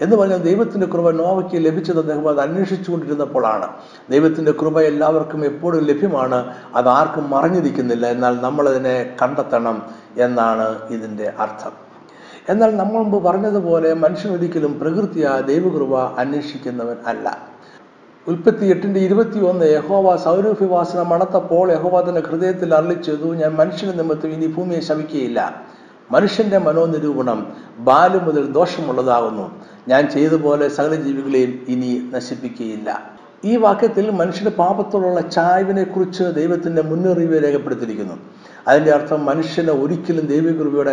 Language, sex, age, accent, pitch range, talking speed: Malayalam, male, 60-79, native, 140-185 Hz, 105 wpm